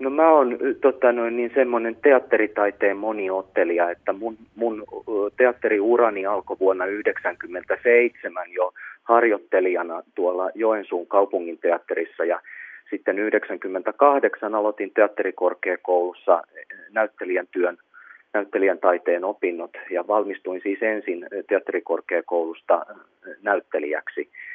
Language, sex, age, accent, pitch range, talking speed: Finnish, male, 30-49, native, 95-130 Hz, 80 wpm